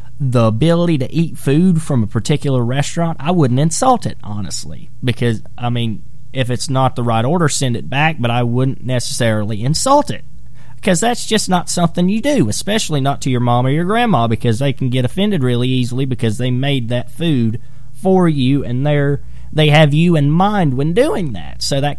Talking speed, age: 200 wpm, 30-49